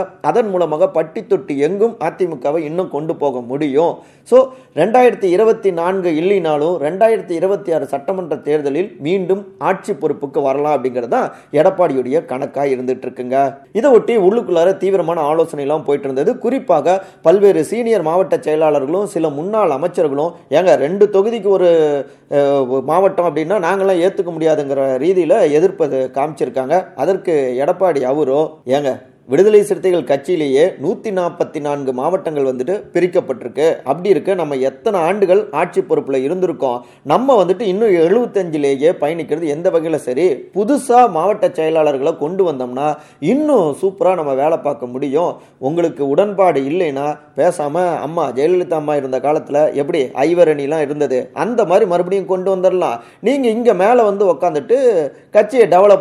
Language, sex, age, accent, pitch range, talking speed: Tamil, male, 30-49, native, 145-195 Hz, 90 wpm